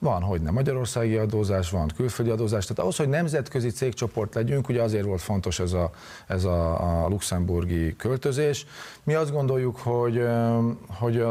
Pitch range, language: 100-130 Hz, Hungarian